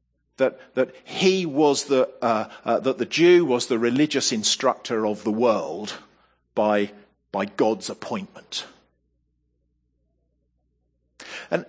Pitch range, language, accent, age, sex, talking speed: 120-175 Hz, English, British, 50-69, male, 115 wpm